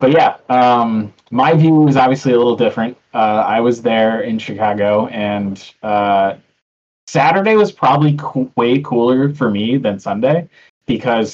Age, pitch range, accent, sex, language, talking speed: 20-39, 100-120 Hz, American, male, English, 150 wpm